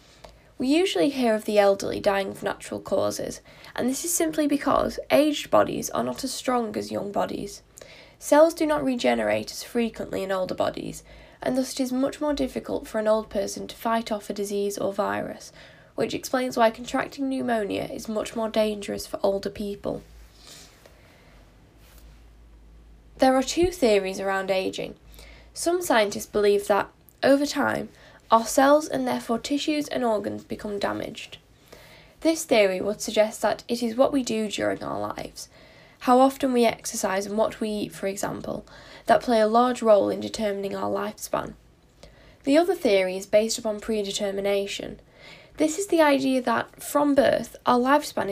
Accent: British